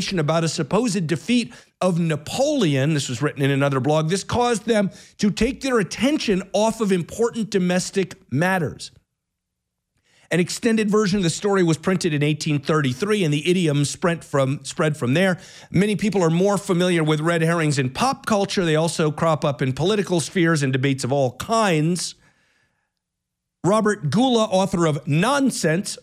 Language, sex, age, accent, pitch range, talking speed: English, male, 50-69, American, 145-200 Hz, 160 wpm